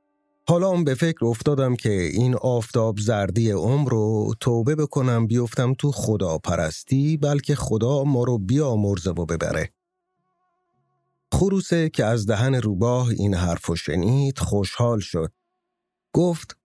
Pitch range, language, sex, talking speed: 105-155 Hz, English, male, 120 wpm